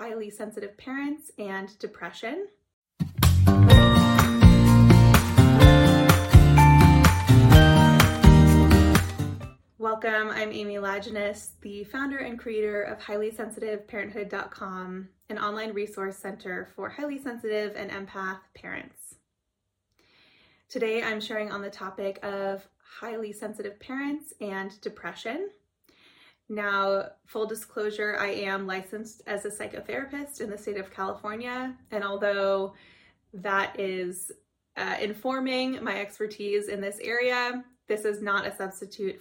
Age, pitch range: 20-39, 190-220 Hz